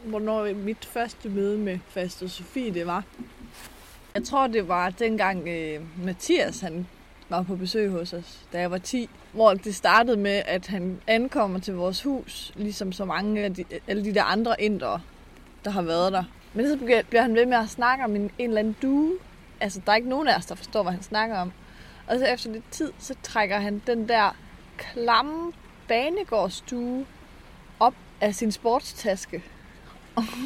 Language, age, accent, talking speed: Danish, 20-39, native, 175 wpm